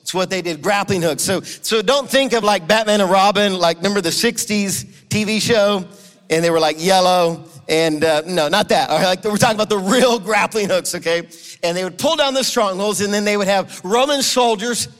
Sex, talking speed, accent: male, 230 wpm, American